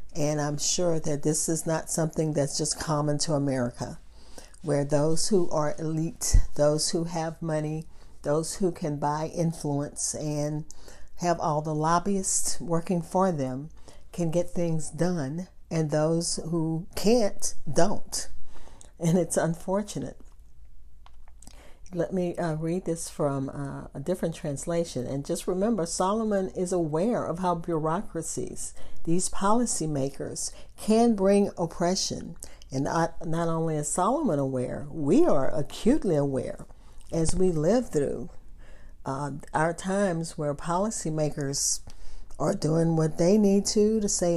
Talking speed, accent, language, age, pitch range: 135 wpm, American, English, 50-69, 150-180 Hz